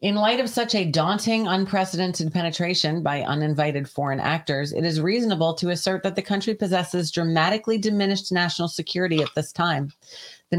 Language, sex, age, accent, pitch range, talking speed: English, female, 40-59, American, 145-180 Hz, 165 wpm